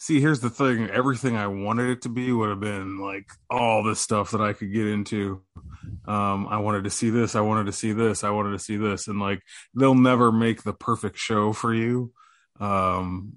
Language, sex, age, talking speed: English, male, 20-39, 220 wpm